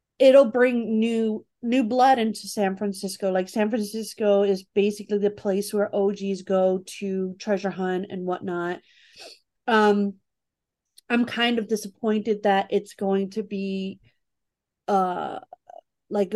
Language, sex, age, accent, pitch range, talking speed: English, female, 30-49, American, 190-215 Hz, 130 wpm